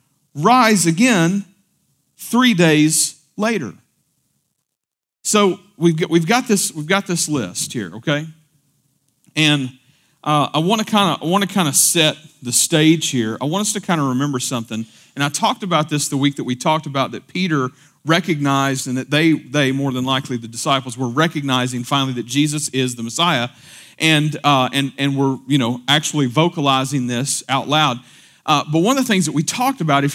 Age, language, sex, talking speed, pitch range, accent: 40-59, English, male, 190 wpm, 140-180 Hz, American